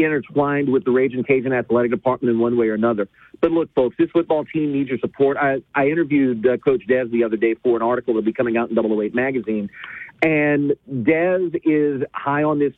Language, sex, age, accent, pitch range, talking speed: English, male, 40-59, American, 130-180 Hz, 220 wpm